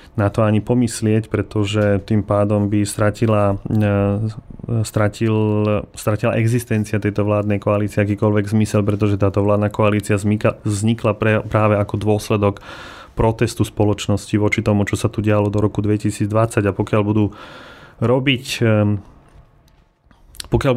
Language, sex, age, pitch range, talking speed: Slovak, male, 30-49, 105-110 Hz, 125 wpm